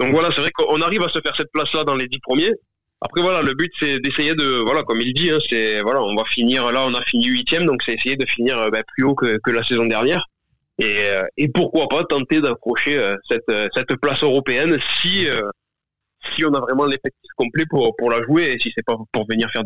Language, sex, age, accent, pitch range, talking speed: French, male, 20-39, French, 115-150 Hz, 240 wpm